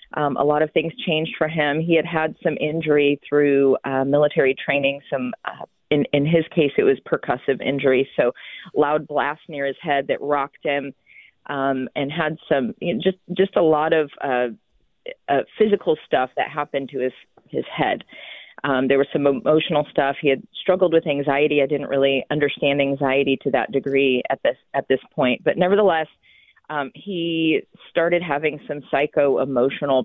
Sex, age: female, 40-59